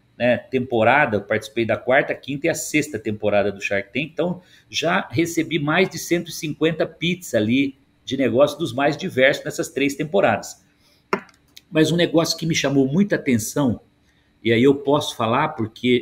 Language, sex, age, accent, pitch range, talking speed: Portuguese, male, 50-69, Brazilian, 120-165 Hz, 165 wpm